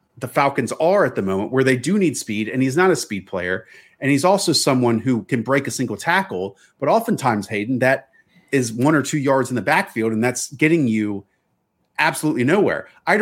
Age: 30-49